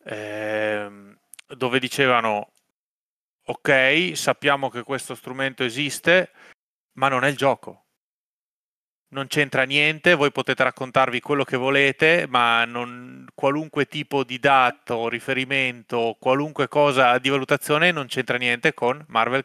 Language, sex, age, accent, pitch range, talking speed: Italian, male, 30-49, native, 120-140 Hz, 115 wpm